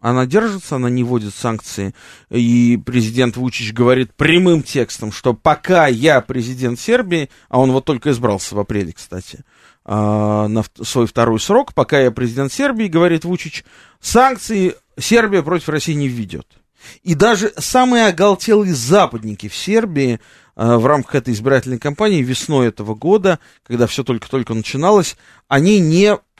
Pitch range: 115-155 Hz